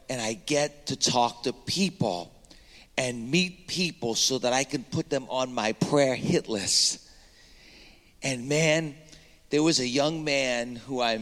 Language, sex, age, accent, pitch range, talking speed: English, male, 50-69, American, 120-145 Hz, 160 wpm